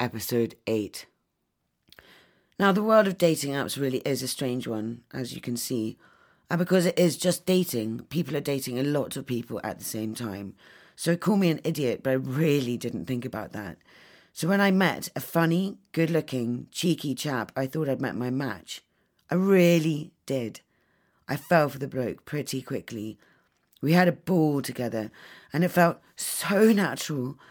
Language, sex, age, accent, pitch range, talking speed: English, female, 40-59, British, 125-165 Hz, 175 wpm